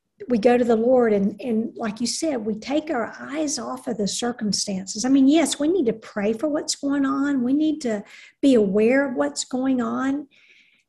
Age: 50-69